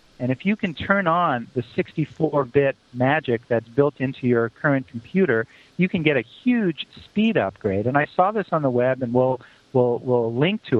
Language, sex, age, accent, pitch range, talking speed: English, male, 40-59, American, 125-160 Hz, 195 wpm